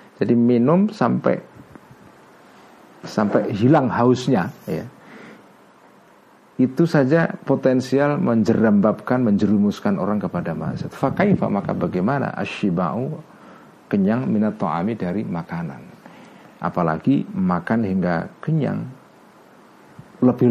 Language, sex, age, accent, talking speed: Indonesian, male, 50-69, native, 80 wpm